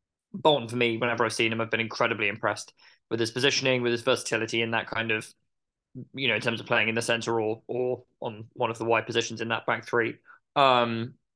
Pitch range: 115-125 Hz